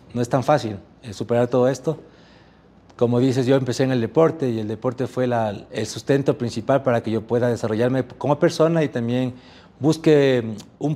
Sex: male